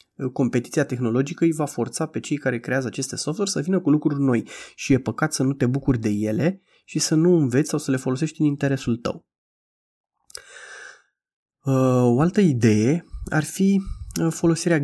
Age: 20-39